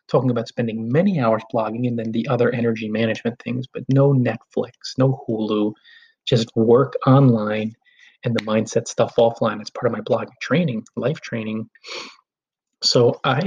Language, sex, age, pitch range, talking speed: English, male, 30-49, 115-140 Hz, 160 wpm